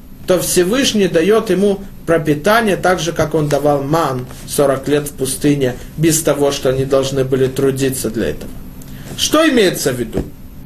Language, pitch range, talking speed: Russian, 155-265 Hz, 160 wpm